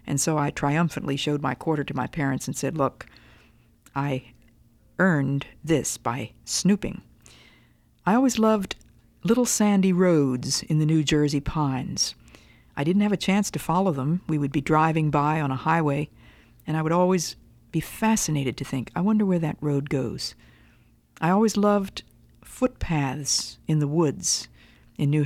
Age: 50-69